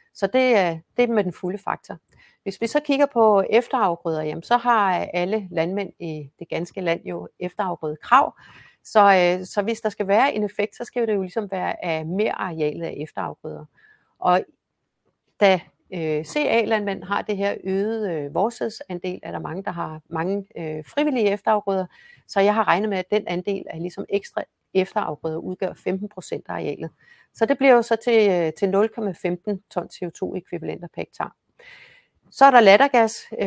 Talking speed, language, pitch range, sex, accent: 165 wpm, Danish, 175-220 Hz, female, native